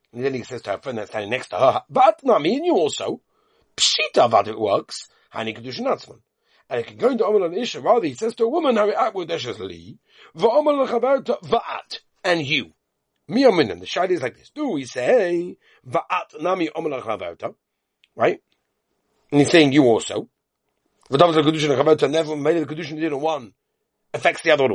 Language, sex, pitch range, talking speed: English, male, 125-180 Hz, 180 wpm